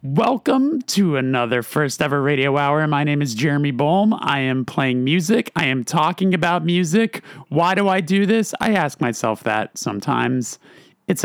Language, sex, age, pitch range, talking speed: English, male, 30-49, 130-180 Hz, 170 wpm